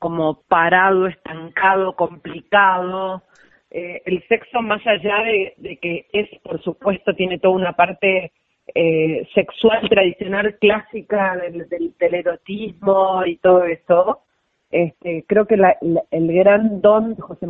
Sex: female